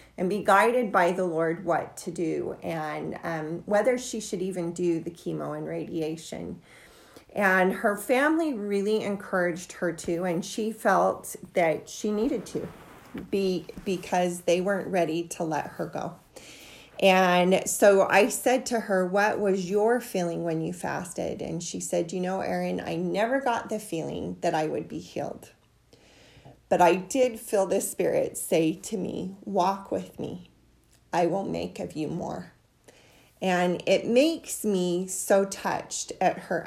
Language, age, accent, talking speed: English, 30-49, American, 160 wpm